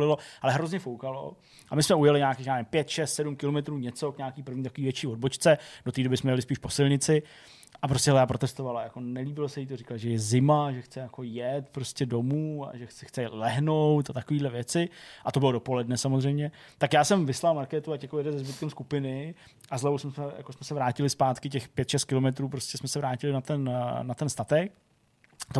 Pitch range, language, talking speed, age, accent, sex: 120-145 Hz, Czech, 215 wpm, 20-39, native, male